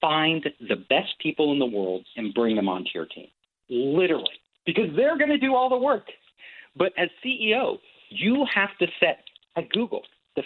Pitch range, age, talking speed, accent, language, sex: 140-200 Hz, 50-69, 185 wpm, American, English, male